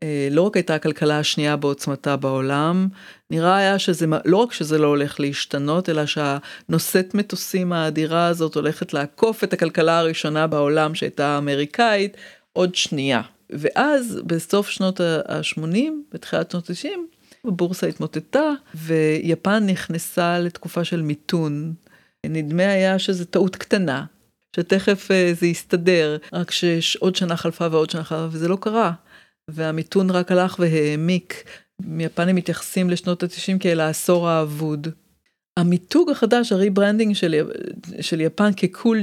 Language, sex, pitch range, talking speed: Hebrew, female, 160-195 Hz, 125 wpm